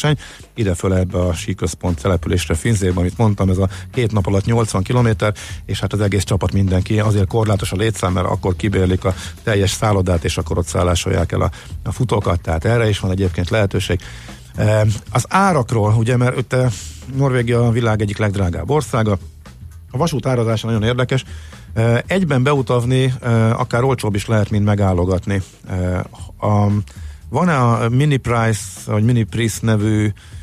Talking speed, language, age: 160 wpm, Hungarian, 50-69